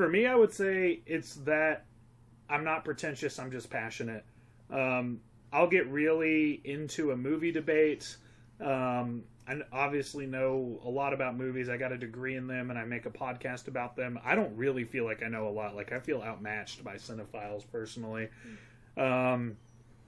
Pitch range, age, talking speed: 115-140 Hz, 30-49, 175 wpm